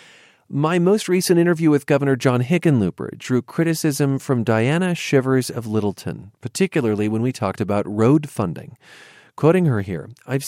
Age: 40-59